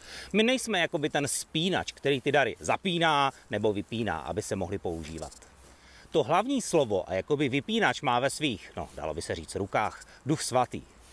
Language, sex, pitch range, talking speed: Czech, male, 115-170 Hz, 175 wpm